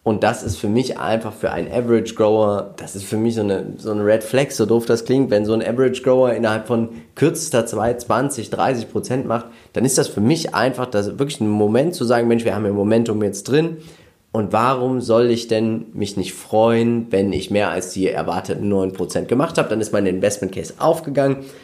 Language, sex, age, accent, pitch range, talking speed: German, male, 30-49, German, 105-130 Hz, 215 wpm